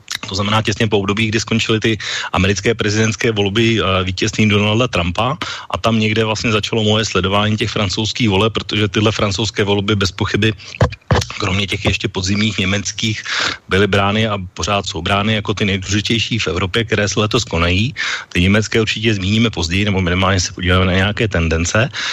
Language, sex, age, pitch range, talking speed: Slovak, male, 30-49, 95-110 Hz, 170 wpm